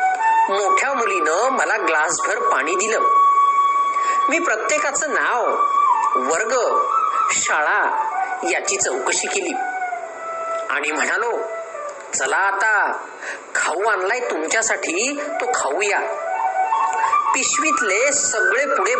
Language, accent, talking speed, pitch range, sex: Marathi, native, 55 wpm, 335-450 Hz, male